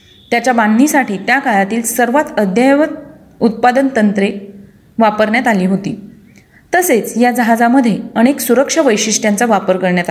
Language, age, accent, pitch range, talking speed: Marathi, 30-49, native, 210-270 Hz, 115 wpm